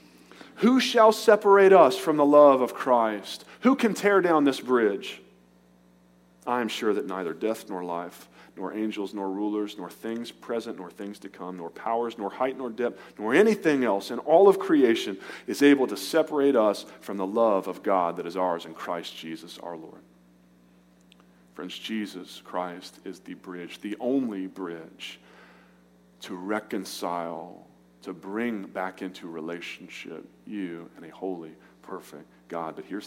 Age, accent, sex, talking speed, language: 40-59, American, male, 160 wpm, English